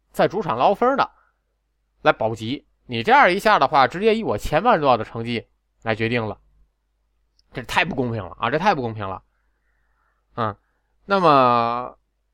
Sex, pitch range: male, 110-165 Hz